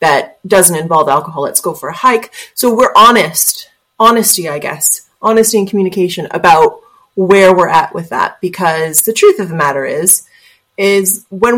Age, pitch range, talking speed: 30-49, 165-210 Hz, 170 wpm